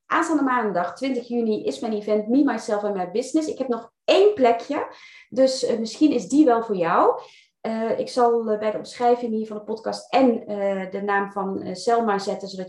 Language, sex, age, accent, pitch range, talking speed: Dutch, female, 30-49, Dutch, 185-235 Hz, 200 wpm